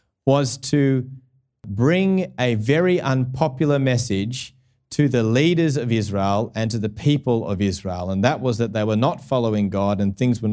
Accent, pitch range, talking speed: Australian, 110-150 Hz, 170 wpm